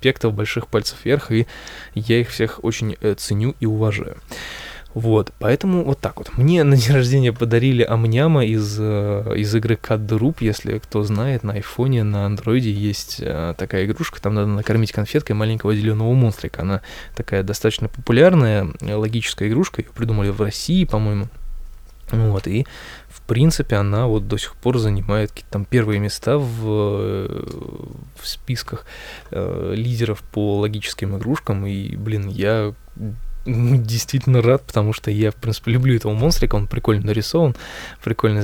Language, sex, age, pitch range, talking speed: Russian, male, 20-39, 105-125 Hz, 150 wpm